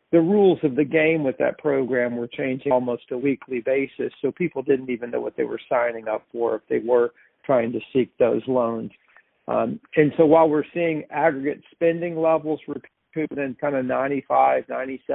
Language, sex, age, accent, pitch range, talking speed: English, male, 50-69, American, 135-160 Hz, 190 wpm